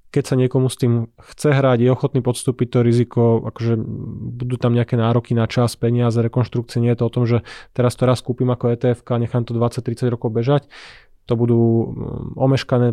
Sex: male